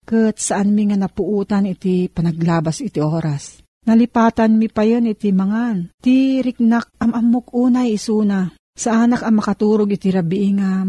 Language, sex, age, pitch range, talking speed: Filipino, female, 40-59, 180-220 Hz, 155 wpm